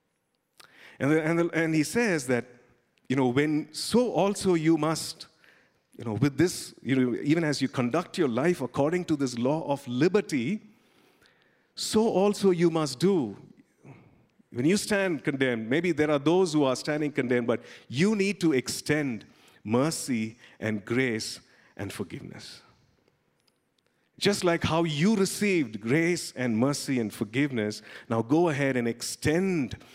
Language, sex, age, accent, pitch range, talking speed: English, male, 50-69, Indian, 120-175 Hz, 150 wpm